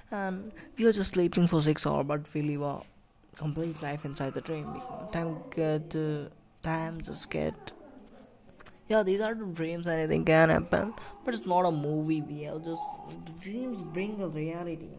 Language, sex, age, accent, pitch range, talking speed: Hindi, female, 20-39, native, 150-185 Hz, 175 wpm